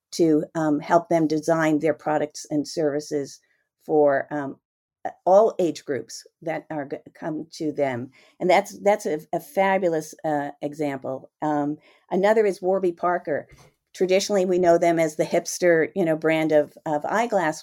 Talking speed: 155 wpm